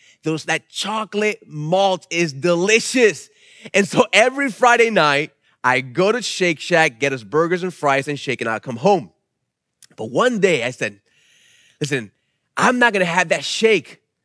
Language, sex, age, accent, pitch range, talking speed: English, male, 30-49, American, 155-230 Hz, 165 wpm